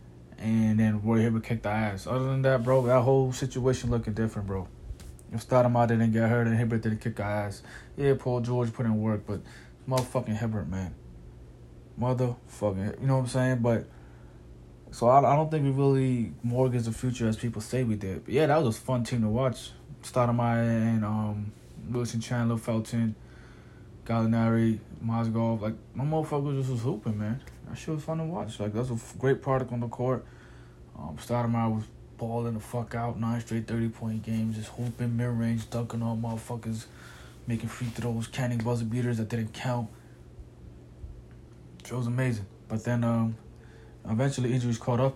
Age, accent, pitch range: 20-39, American, 110-125 Hz